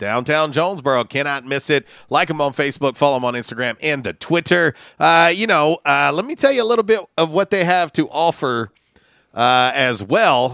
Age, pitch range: 40-59, 125-170 Hz